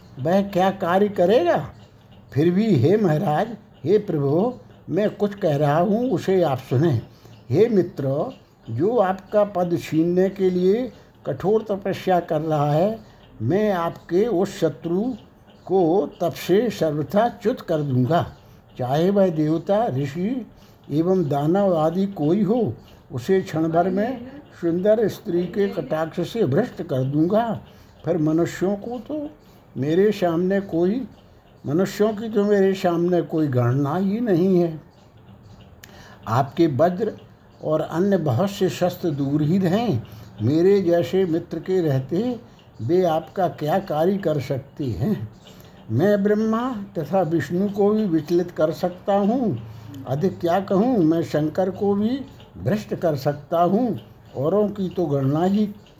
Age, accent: 60-79, native